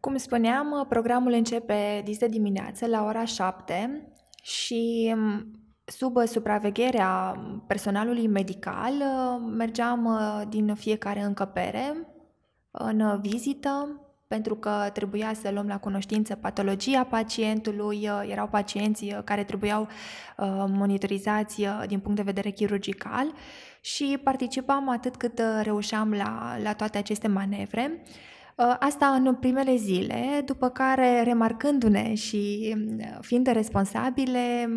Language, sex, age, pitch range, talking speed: Romanian, female, 20-39, 205-245 Hz, 100 wpm